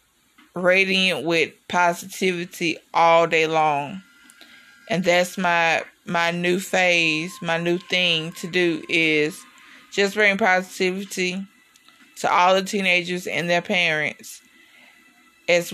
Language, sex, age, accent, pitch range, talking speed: English, female, 20-39, American, 170-210 Hz, 110 wpm